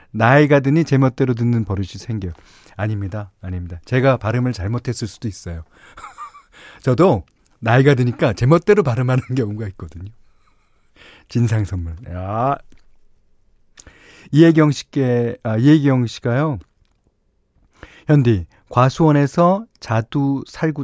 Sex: male